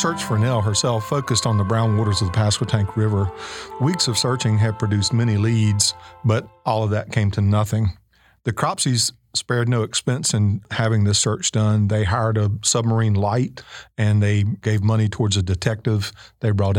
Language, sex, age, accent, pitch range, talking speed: English, male, 40-59, American, 105-125 Hz, 180 wpm